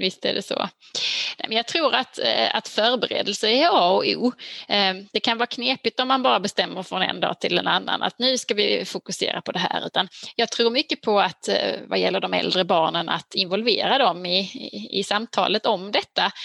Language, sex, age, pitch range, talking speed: Swedish, female, 20-39, 190-230 Hz, 210 wpm